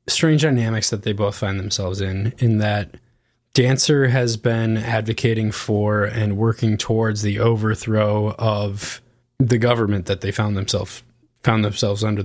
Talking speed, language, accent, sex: 145 wpm, English, American, male